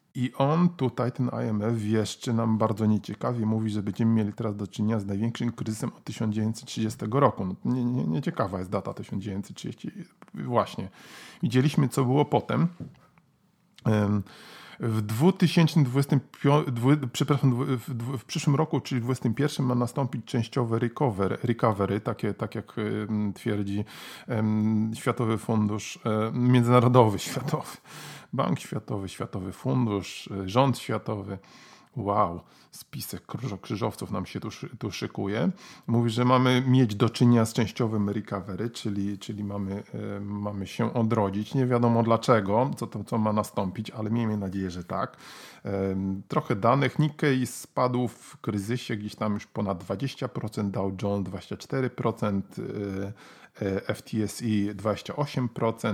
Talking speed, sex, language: 120 wpm, male, Polish